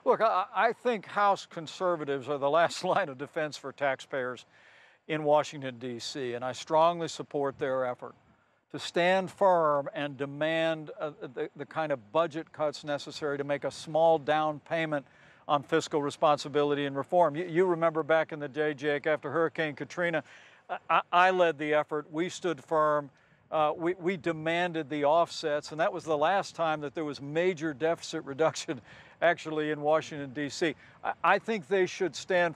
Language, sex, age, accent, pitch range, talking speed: English, male, 60-79, American, 150-175 Hz, 160 wpm